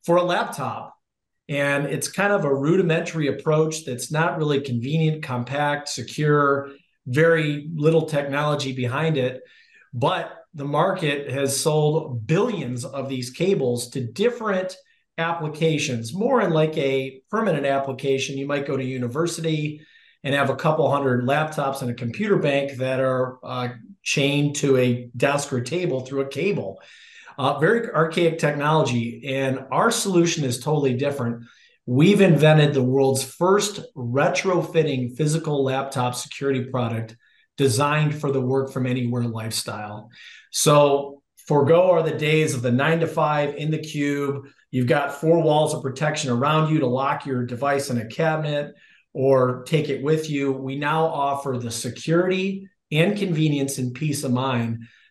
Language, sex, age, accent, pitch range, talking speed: English, male, 40-59, American, 130-160 Hz, 150 wpm